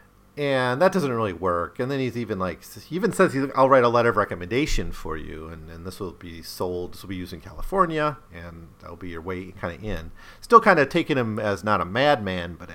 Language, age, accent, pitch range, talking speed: English, 40-59, American, 90-130 Hz, 245 wpm